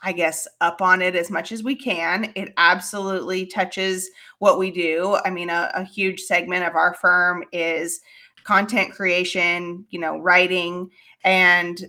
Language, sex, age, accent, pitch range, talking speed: English, female, 30-49, American, 180-220 Hz, 160 wpm